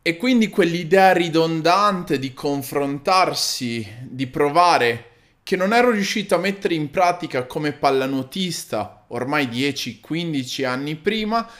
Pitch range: 130-185 Hz